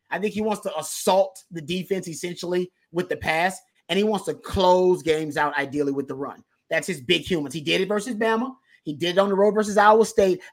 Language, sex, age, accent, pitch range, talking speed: English, male, 30-49, American, 155-190 Hz, 235 wpm